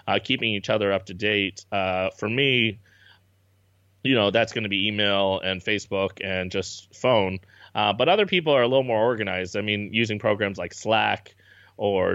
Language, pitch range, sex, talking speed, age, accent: English, 100-130 Hz, male, 185 wpm, 30-49, American